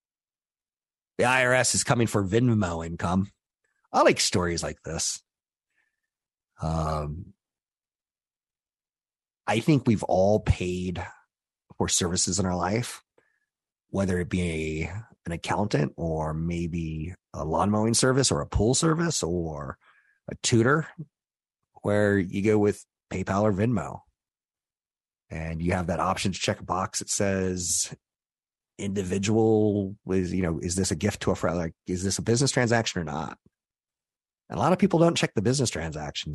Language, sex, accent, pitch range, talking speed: English, male, American, 85-110 Hz, 145 wpm